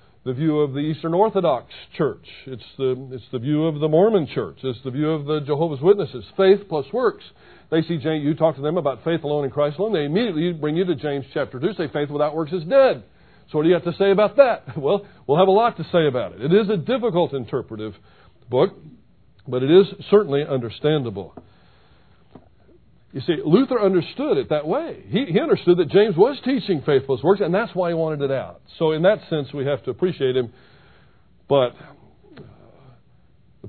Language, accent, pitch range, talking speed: English, American, 125-165 Hz, 210 wpm